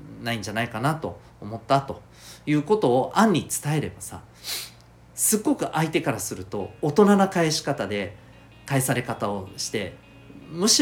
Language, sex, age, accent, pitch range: Japanese, male, 40-59, native, 100-145 Hz